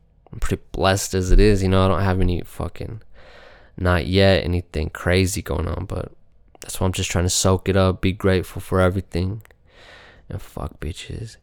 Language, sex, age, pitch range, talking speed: English, male, 20-39, 90-110 Hz, 190 wpm